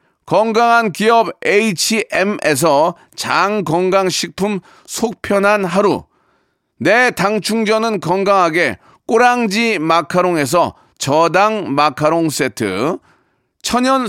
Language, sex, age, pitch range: Korean, male, 40-59, 180-235 Hz